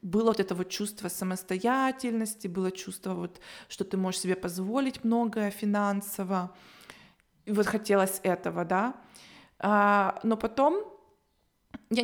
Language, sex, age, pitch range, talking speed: Russian, female, 20-39, 190-225 Hz, 125 wpm